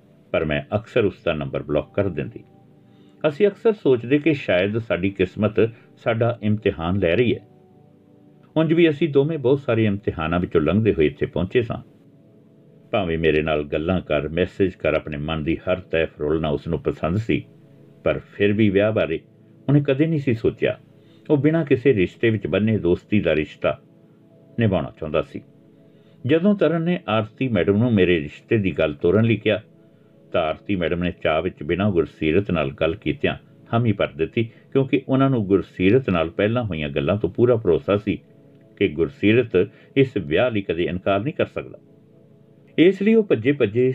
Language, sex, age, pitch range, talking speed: Punjabi, male, 60-79, 90-140 Hz, 170 wpm